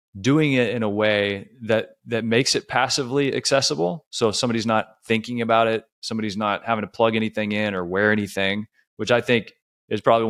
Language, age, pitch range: English, 20-39, 105-120 Hz